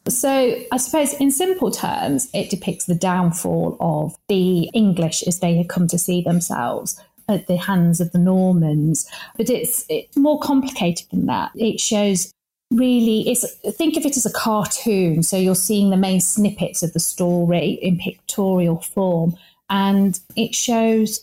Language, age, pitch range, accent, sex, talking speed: English, 30-49, 175-210 Hz, British, female, 165 wpm